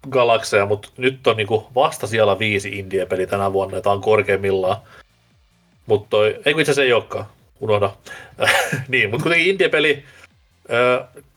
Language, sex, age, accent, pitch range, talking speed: Finnish, male, 30-49, native, 100-125 Hz, 145 wpm